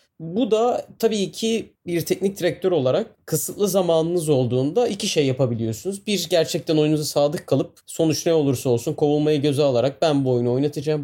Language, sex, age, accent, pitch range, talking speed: Turkish, male, 30-49, native, 135-185 Hz, 165 wpm